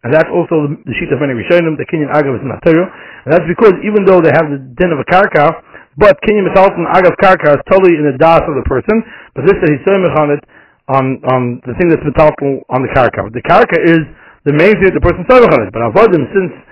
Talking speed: 255 wpm